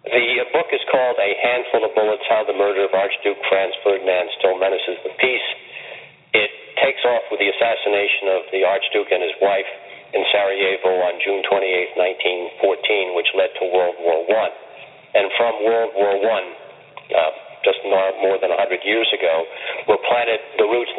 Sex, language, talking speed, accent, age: male, English, 170 wpm, American, 40-59